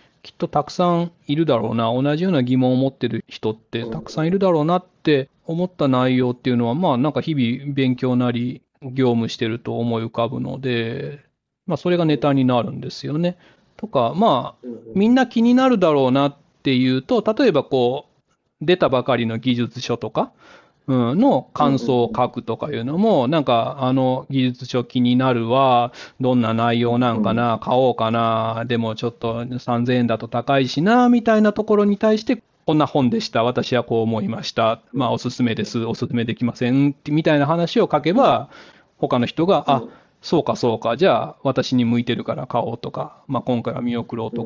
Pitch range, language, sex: 120-155 Hz, Japanese, male